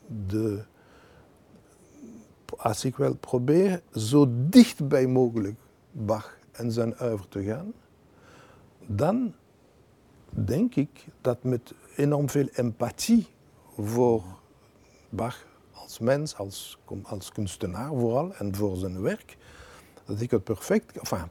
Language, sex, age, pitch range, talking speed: Dutch, male, 60-79, 110-140 Hz, 110 wpm